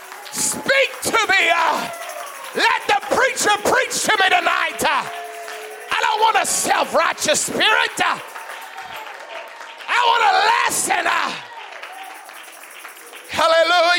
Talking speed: 105 wpm